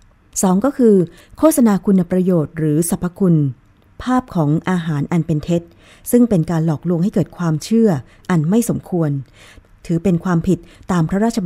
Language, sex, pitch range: Thai, female, 155-195 Hz